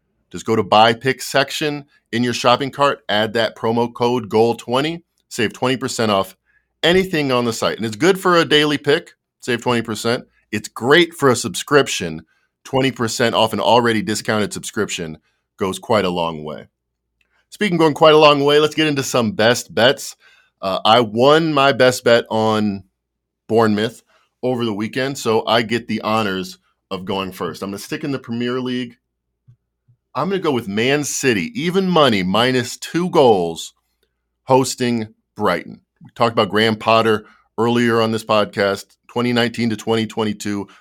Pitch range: 105-140 Hz